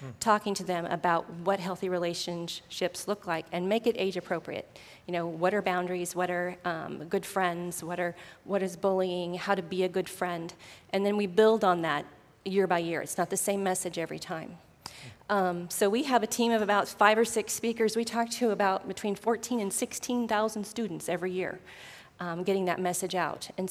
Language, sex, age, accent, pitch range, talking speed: English, female, 30-49, American, 180-215 Hz, 205 wpm